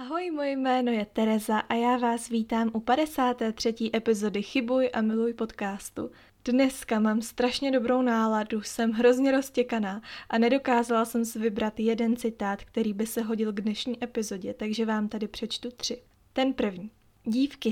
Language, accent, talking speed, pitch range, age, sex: Czech, native, 155 wpm, 220-245 Hz, 20-39, female